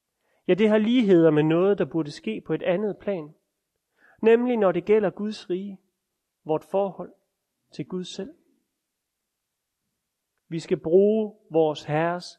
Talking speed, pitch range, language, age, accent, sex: 140 wpm, 165-205 Hz, Danish, 30-49, native, male